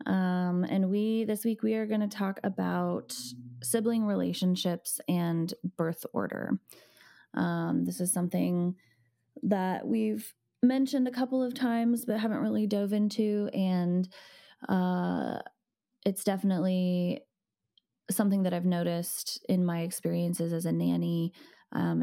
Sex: female